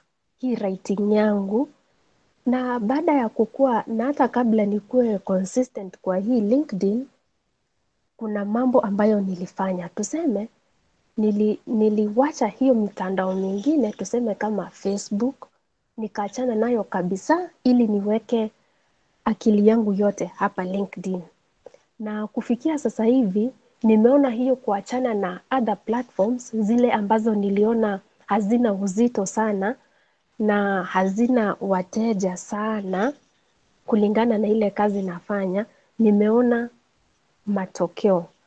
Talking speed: 100 wpm